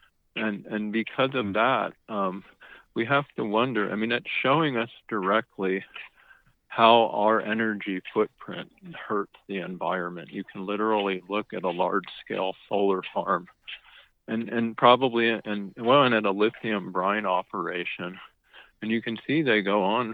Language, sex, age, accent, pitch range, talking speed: English, male, 40-59, American, 100-115 Hz, 150 wpm